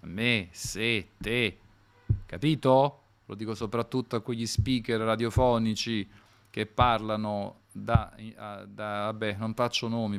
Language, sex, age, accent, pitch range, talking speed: Italian, male, 40-59, native, 105-120 Hz, 120 wpm